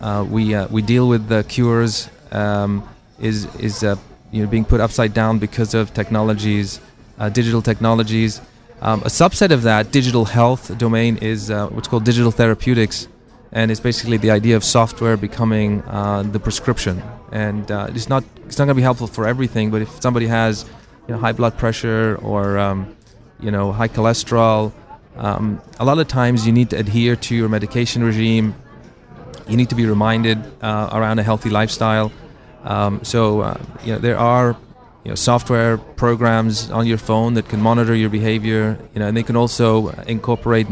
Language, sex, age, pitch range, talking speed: Ukrainian, male, 30-49, 110-120 Hz, 185 wpm